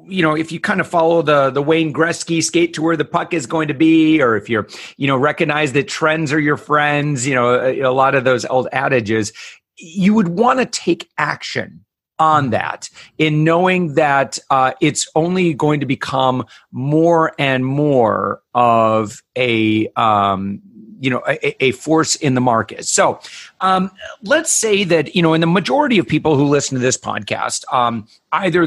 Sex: male